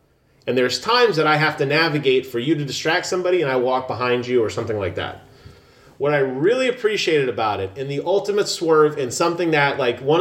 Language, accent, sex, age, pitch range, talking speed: English, American, male, 30-49, 125-165 Hz, 220 wpm